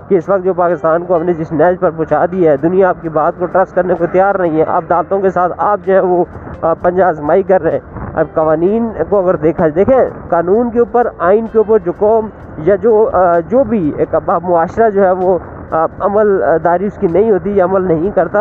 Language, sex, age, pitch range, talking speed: Urdu, male, 20-39, 165-225 Hz, 225 wpm